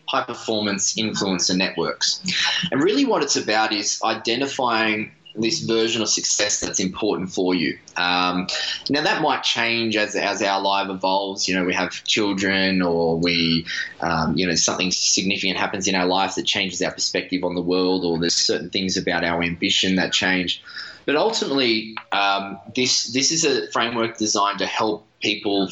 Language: English